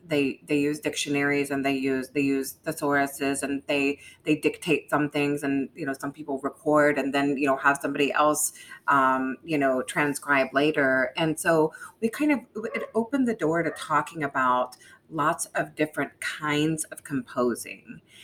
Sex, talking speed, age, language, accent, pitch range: female, 170 wpm, 30-49, English, American, 140-160 Hz